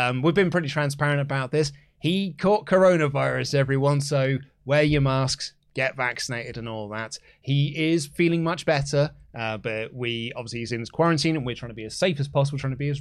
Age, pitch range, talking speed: 20-39, 120-165 Hz, 210 wpm